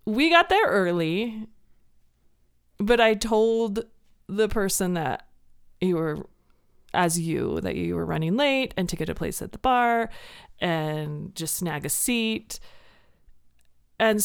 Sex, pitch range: female, 150-220 Hz